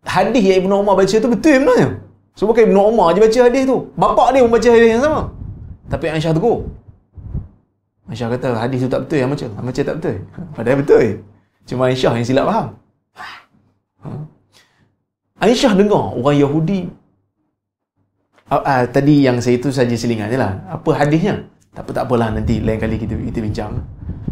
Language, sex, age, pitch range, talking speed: Malayalam, male, 20-39, 105-145 Hz, 175 wpm